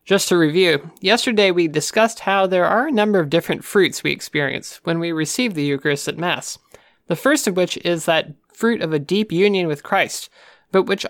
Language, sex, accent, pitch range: English, male, American, 155-200 Hz